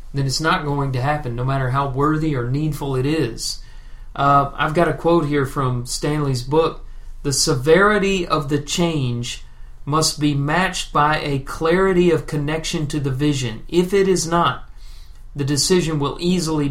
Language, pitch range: English, 130-170 Hz